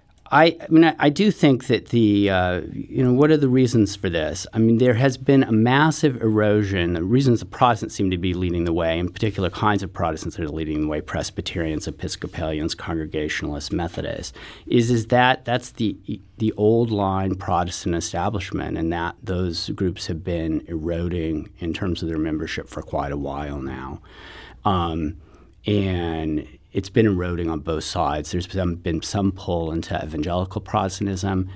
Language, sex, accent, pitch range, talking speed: English, male, American, 80-105 Hz, 175 wpm